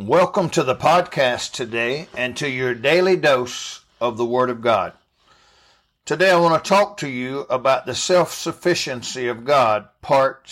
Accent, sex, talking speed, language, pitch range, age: American, male, 160 wpm, English, 125-170 Hz, 60-79